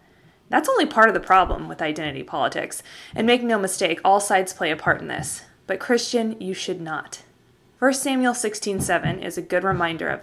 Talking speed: 200 wpm